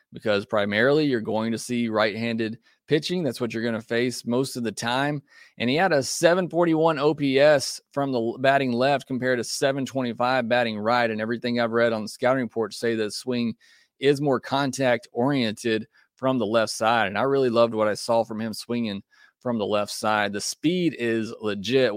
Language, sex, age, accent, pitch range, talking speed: English, male, 30-49, American, 115-140 Hz, 190 wpm